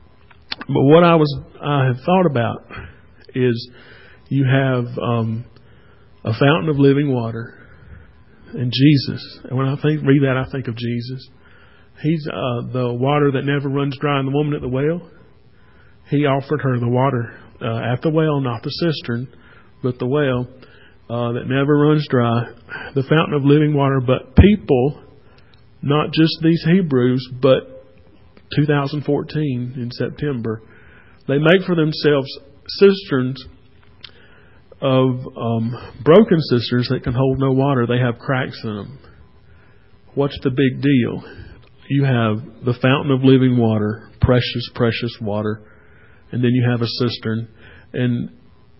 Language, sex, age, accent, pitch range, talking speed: English, male, 40-59, American, 120-145 Hz, 145 wpm